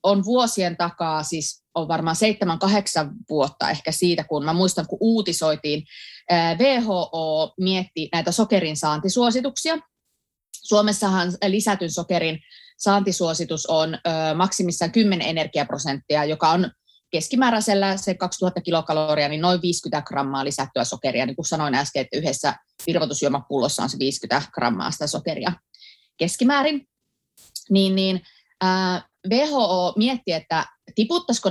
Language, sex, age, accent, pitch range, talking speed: Finnish, female, 20-39, native, 165-225 Hz, 120 wpm